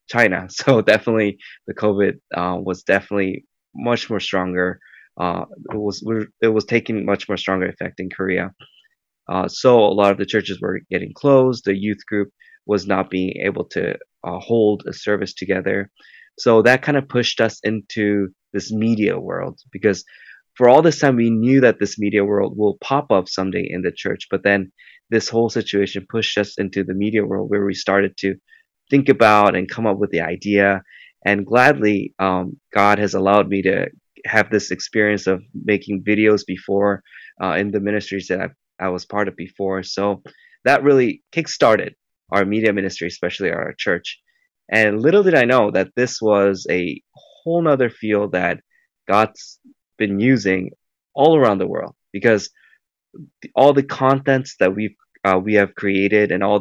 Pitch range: 95-115 Hz